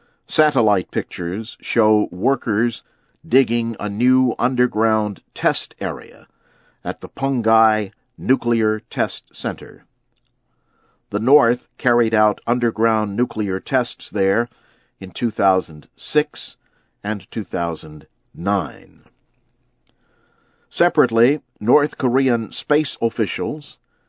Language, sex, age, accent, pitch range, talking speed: English, male, 50-69, American, 100-125 Hz, 80 wpm